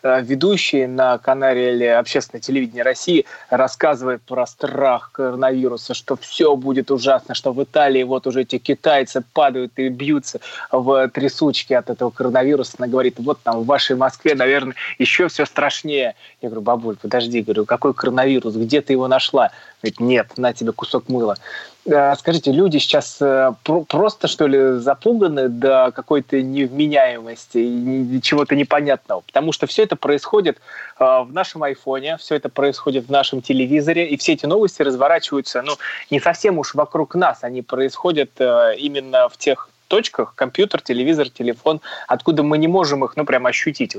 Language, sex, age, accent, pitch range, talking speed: Russian, male, 20-39, native, 125-150 Hz, 155 wpm